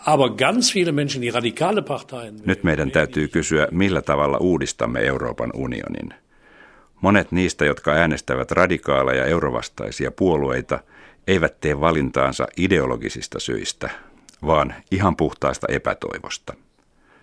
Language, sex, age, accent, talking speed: Finnish, male, 60-79, native, 90 wpm